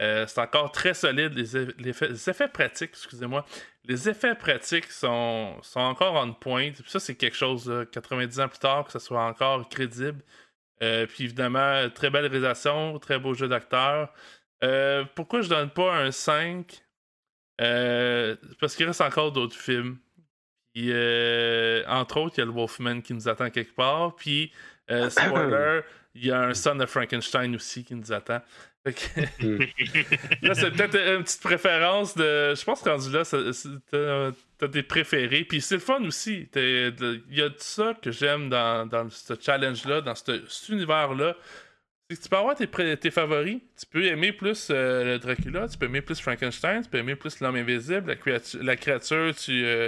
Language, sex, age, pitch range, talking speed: French, male, 20-39, 125-160 Hz, 185 wpm